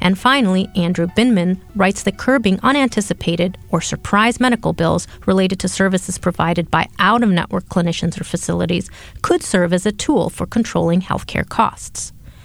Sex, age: female, 30-49